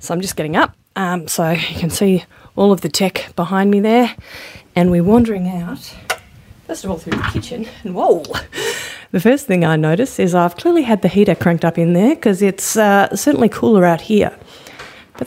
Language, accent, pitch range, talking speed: English, Australian, 175-235 Hz, 205 wpm